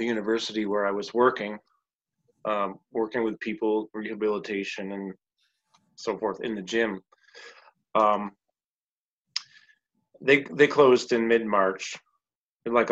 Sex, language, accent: male, English, American